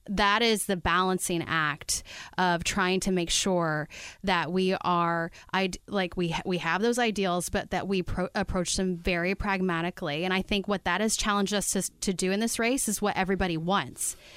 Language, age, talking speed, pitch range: English, 30-49, 190 wpm, 175-205 Hz